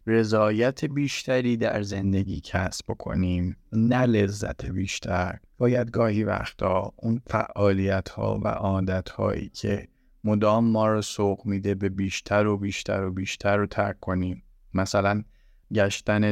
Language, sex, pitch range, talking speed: Persian, male, 100-120 Hz, 130 wpm